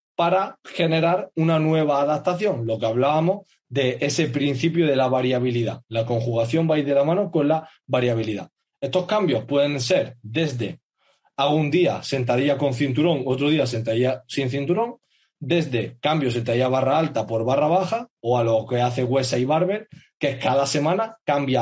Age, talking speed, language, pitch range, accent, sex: 30-49, 170 wpm, Spanish, 125-165 Hz, Spanish, male